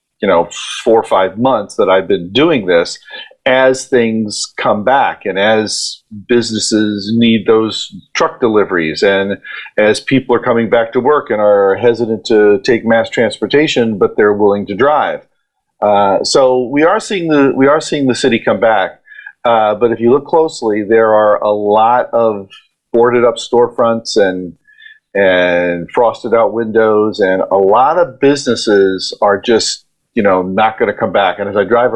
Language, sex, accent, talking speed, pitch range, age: English, male, American, 175 wpm, 105-140 Hz, 50-69